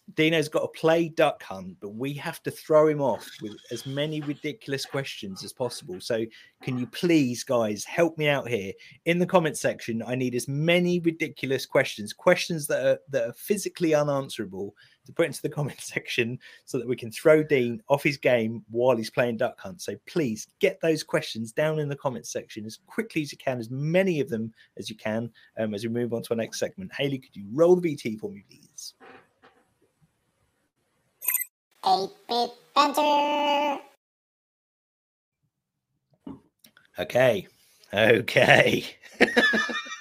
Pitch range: 135-175 Hz